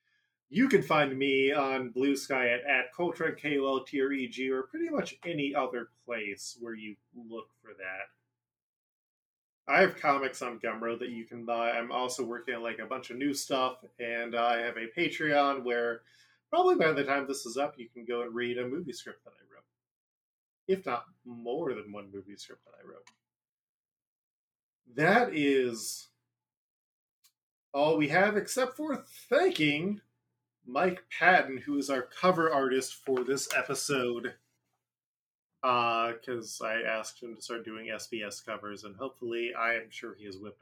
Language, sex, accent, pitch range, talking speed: English, male, American, 115-145 Hz, 165 wpm